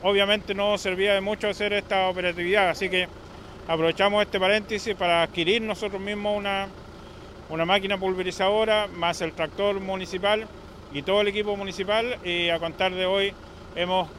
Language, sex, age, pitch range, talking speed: Spanish, male, 40-59, 165-200 Hz, 150 wpm